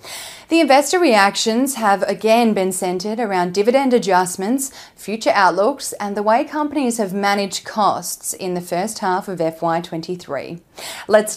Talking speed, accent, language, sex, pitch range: 135 wpm, Australian, English, female, 180-230 Hz